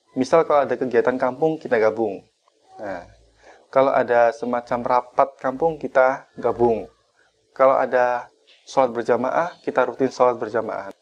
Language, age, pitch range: Indonesian, 20-39, 125-165 Hz